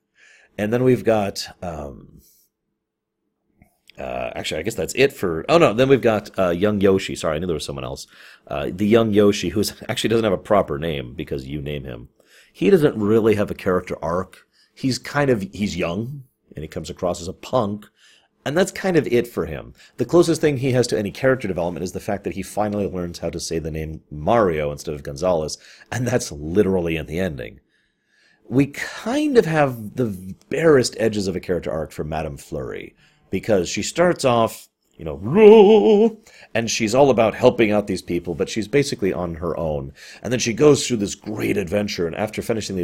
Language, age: English, 40-59